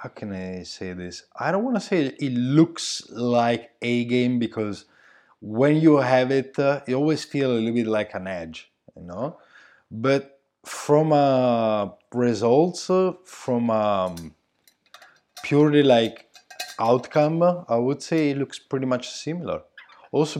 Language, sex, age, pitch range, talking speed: English, male, 20-39, 105-140 Hz, 155 wpm